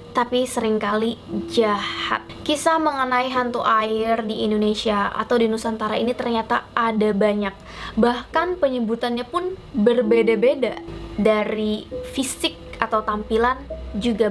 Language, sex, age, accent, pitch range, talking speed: Indonesian, female, 20-39, native, 215-255 Hz, 105 wpm